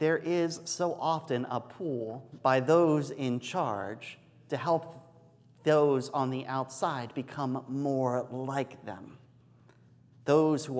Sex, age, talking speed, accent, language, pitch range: male, 40-59, 120 wpm, American, English, 125-160 Hz